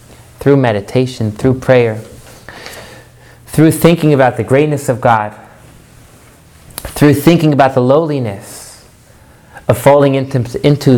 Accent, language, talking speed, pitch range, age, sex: American, English, 110 wpm, 115-145 Hz, 30-49, male